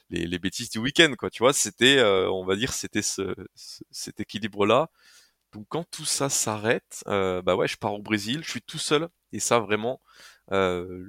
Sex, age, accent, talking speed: male, 20-39, French, 200 wpm